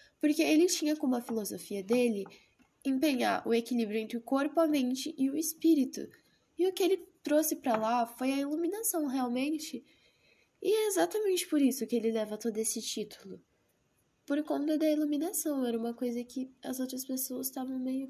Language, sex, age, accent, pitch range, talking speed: Portuguese, female, 10-29, Brazilian, 240-300 Hz, 175 wpm